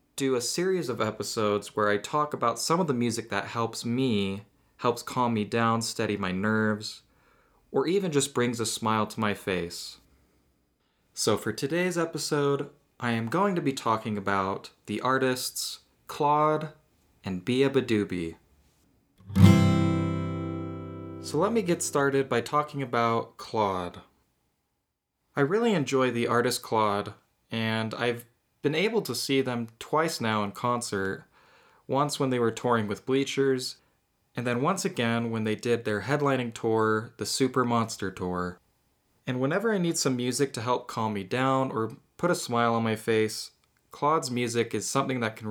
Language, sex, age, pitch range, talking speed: English, male, 20-39, 105-135 Hz, 160 wpm